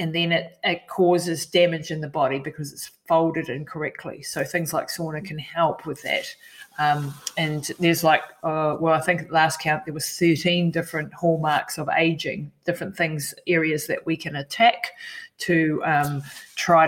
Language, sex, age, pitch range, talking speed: English, female, 30-49, 160-205 Hz, 180 wpm